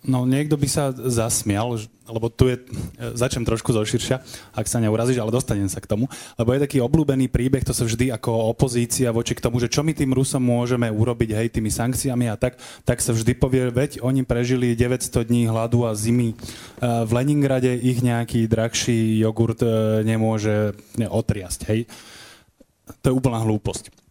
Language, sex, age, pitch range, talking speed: Slovak, male, 20-39, 110-130 Hz, 175 wpm